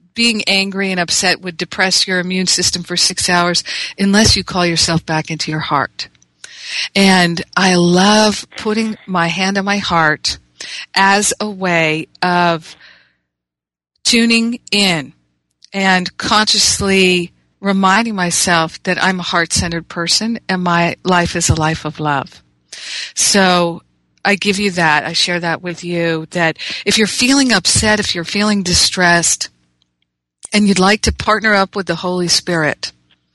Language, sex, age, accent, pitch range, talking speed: English, female, 50-69, American, 160-195 Hz, 145 wpm